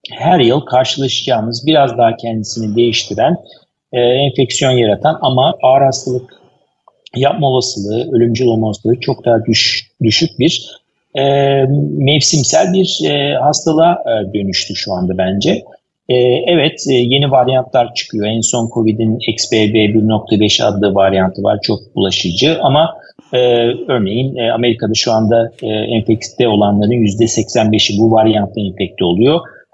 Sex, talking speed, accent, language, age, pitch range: male, 130 wpm, native, Turkish, 50-69, 110-140 Hz